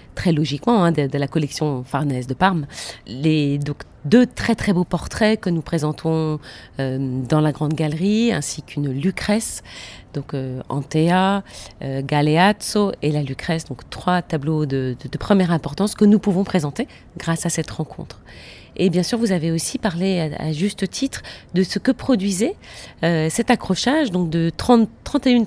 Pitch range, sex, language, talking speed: 150-200 Hz, female, French, 175 wpm